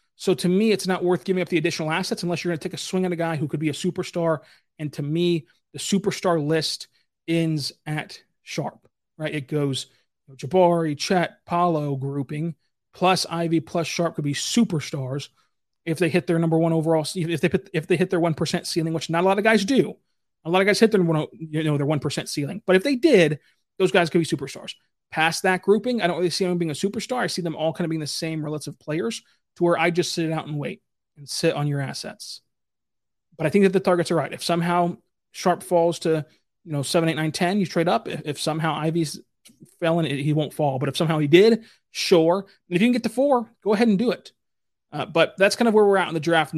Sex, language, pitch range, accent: male, English, 155-180 Hz, American